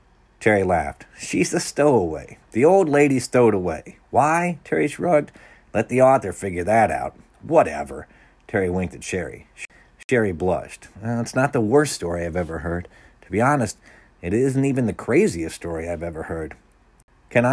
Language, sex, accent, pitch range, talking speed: English, male, American, 90-125 Hz, 170 wpm